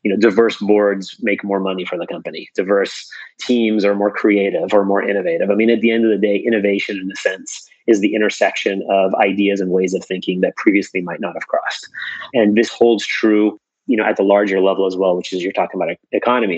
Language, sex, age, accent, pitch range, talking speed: English, male, 30-49, American, 95-115 Hz, 230 wpm